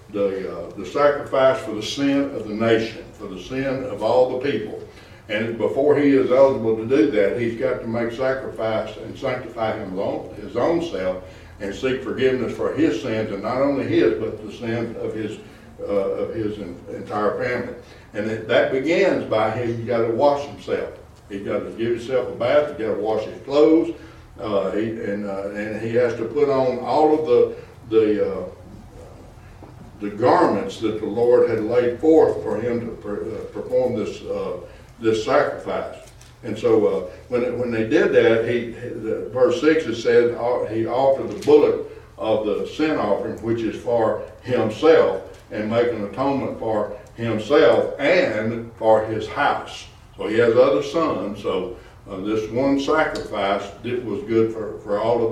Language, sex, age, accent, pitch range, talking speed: English, male, 60-79, American, 110-160 Hz, 185 wpm